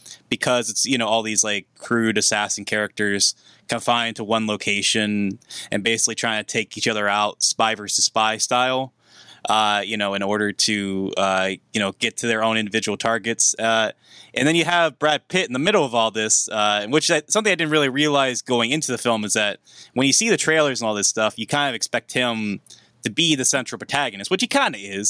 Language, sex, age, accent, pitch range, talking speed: English, male, 20-39, American, 105-130 Hz, 220 wpm